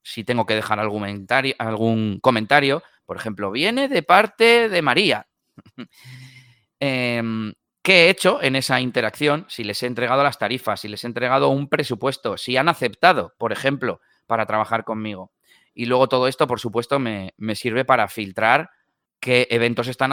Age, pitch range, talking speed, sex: 30-49, 110-135 Hz, 160 wpm, male